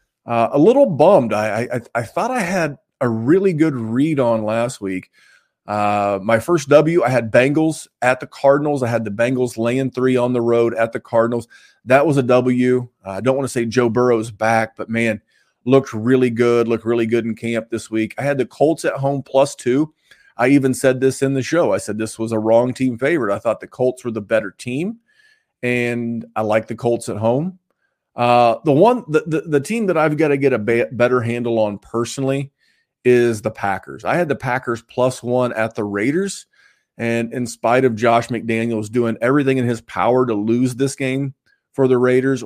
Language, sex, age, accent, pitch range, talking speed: English, male, 30-49, American, 115-140 Hz, 210 wpm